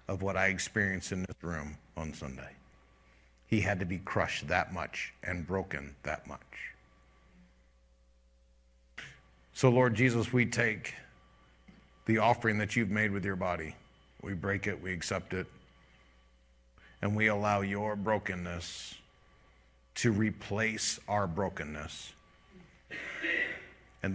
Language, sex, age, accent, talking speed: English, male, 50-69, American, 120 wpm